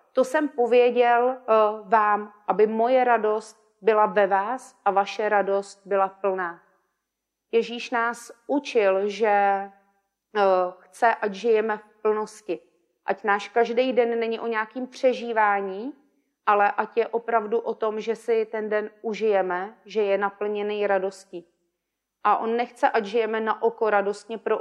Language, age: Czech, 30-49